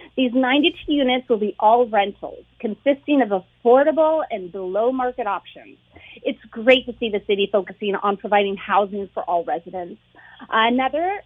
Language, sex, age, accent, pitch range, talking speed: English, female, 30-49, American, 210-275 Hz, 145 wpm